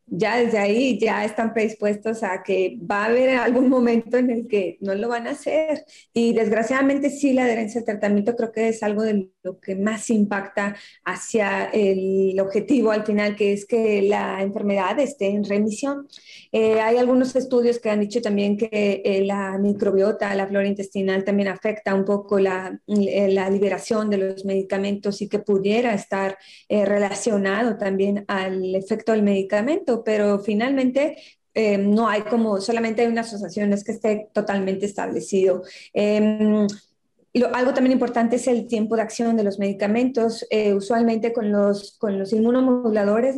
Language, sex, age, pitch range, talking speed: Spanish, female, 20-39, 200-235 Hz, 170 wpm